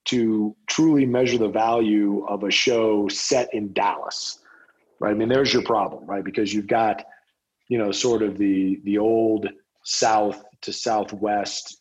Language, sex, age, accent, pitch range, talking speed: English, male, 40-59, American, 100-115 Hz, 160 wpm